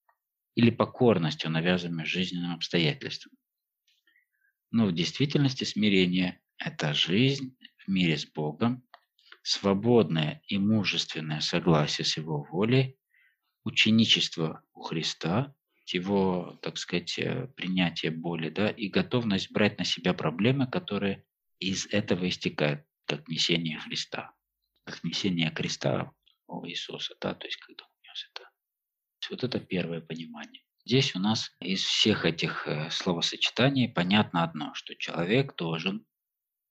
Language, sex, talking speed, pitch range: Russian, male, 120 wpm, 85-115 Hz